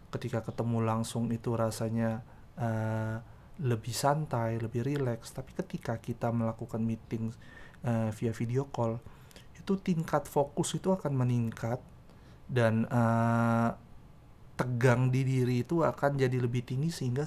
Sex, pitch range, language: male, 115-140 Hz, Indonesian